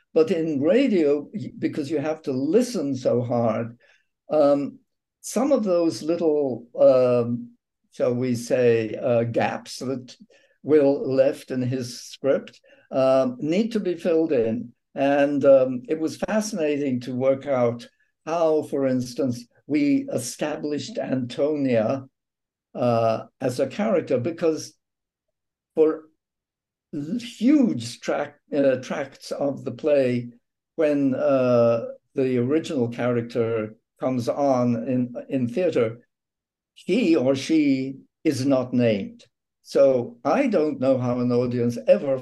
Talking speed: 120 wpm